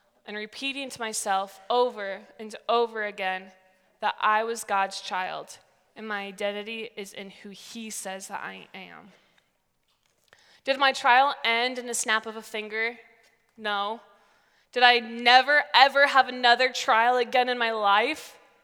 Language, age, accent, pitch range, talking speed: English, 20-39, American, 205-240 Hz, 150 wpm